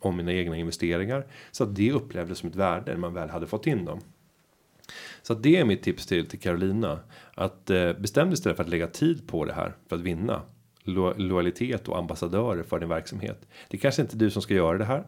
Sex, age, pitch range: male, 30-49, 90-115 Hz